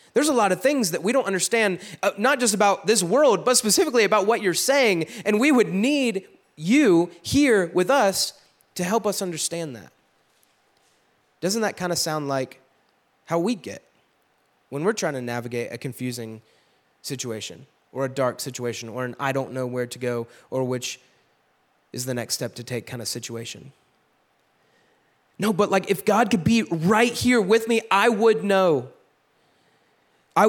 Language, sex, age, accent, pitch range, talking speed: English, male, 30-49, American, 140-215 Hz, 175 wpm